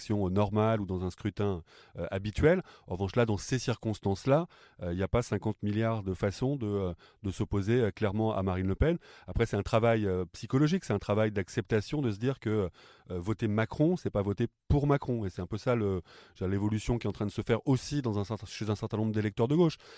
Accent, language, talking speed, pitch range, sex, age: French, French, 245 wpm, 100-120 Hz, male, 30-49